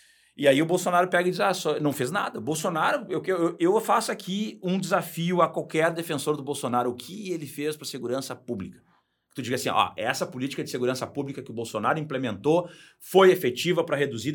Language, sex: Portuguese, male